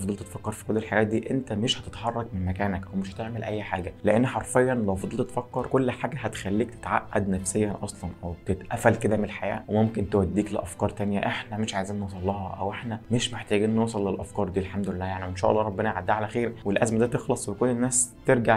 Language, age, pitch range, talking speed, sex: Arabic, 20-39, 100-120 Hz, 200 wpm, male